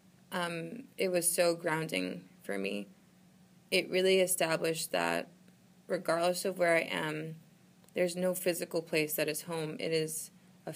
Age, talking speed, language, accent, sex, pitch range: 20-39, 145 wpm, English, American, female, 170-185 Hz